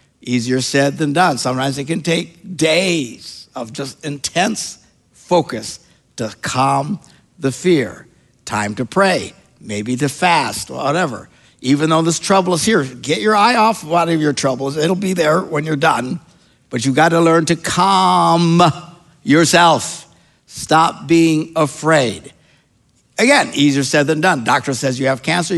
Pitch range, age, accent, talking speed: 130-175 Hz, 60-79, American, 150 wpm